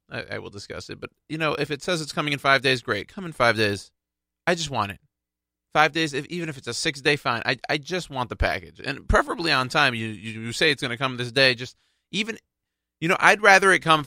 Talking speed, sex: 265 wpm, male